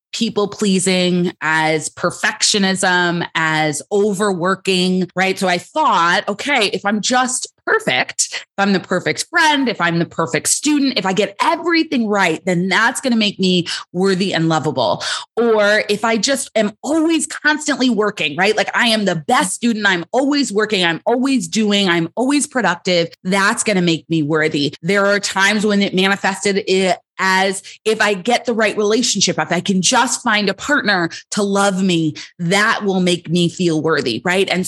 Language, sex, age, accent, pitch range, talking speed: English, female, 20-39, American, 180-225 Hz, 175 wpm